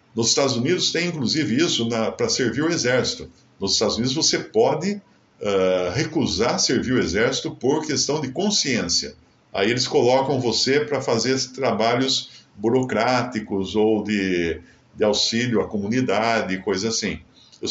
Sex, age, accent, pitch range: male, 50-69, Brazilian, 110-155 Hz